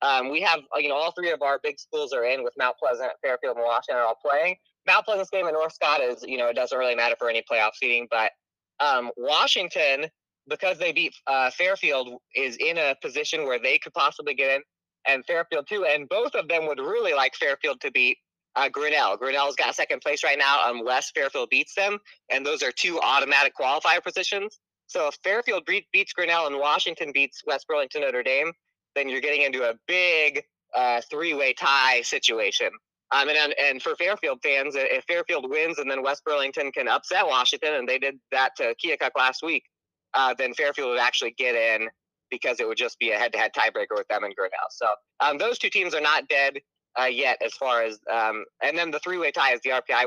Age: 20-39